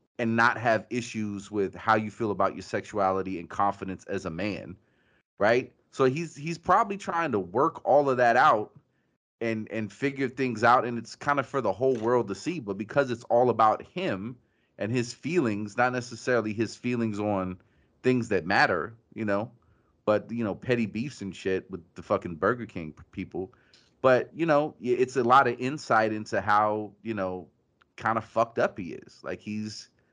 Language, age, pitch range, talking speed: English, 30-49, 100-120 Hz, 190 wpm